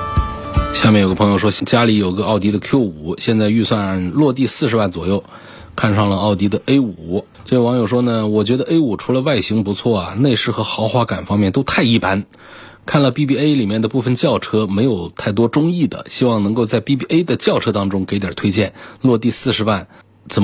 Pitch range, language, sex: 90-110 Hz, Chinese, male